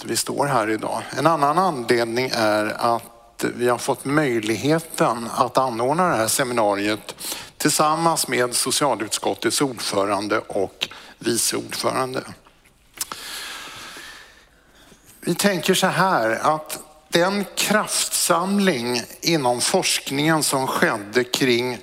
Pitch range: 120-165 Hz